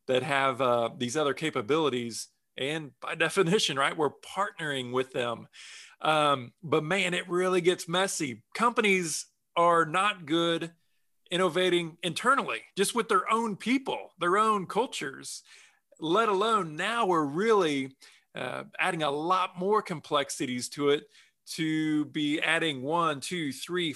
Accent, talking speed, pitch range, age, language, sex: American, 135 wpm, 140-185 Hz, 40-59, English, male